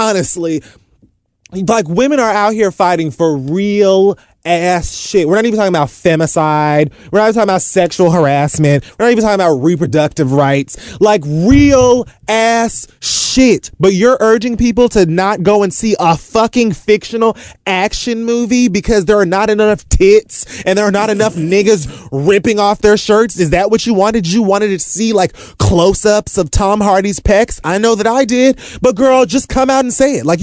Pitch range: 165-220 Hz